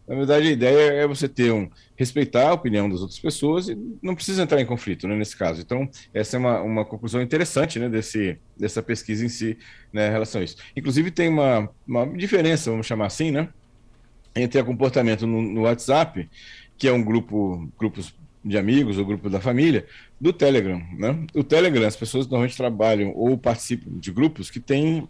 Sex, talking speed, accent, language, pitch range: male, 195 wpm, Brazilian, Portuguese, 105-135 Hz